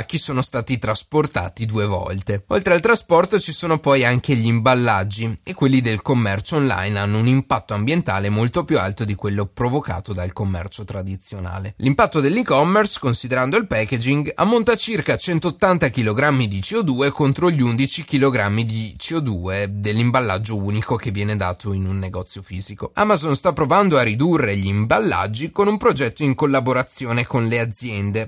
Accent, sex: native, male